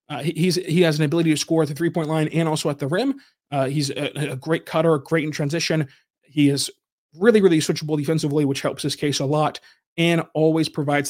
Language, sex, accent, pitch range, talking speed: English, male, American, 145-165 Hz, 220 wpm